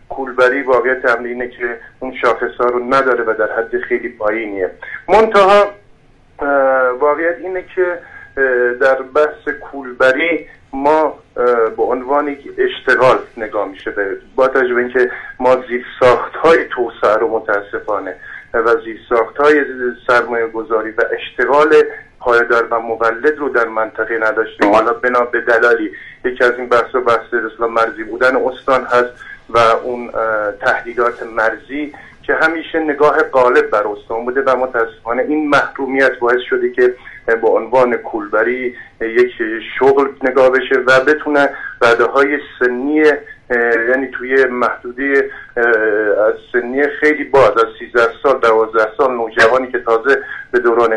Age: 50-69